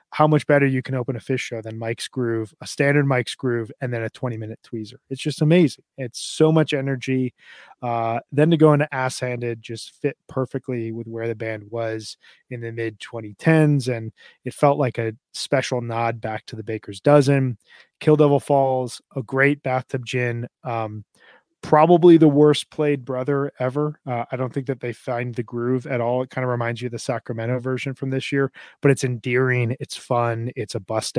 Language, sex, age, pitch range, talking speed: English, male, 20-39, 115-135 Hz, 200 wpm